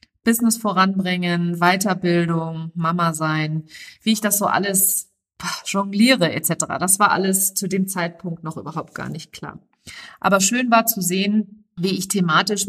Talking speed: 145 wpm